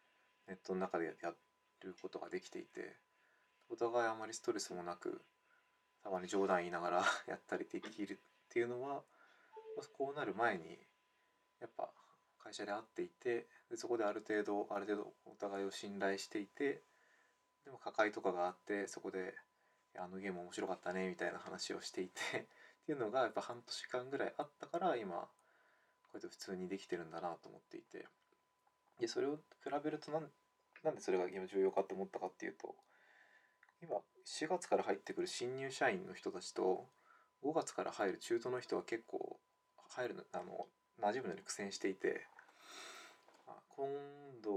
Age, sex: 20-39, male